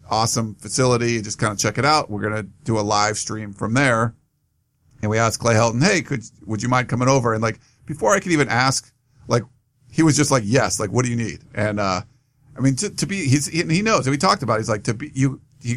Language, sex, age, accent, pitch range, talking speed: English, male, 40-59, American, 110-140 Hz, 255 wpm